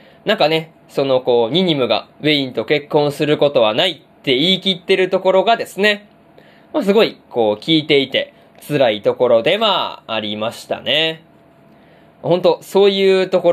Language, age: Japanese, 20-39